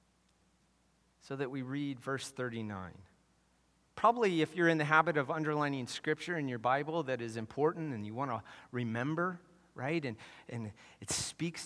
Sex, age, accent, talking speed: male, 40-59, American, 160 wpm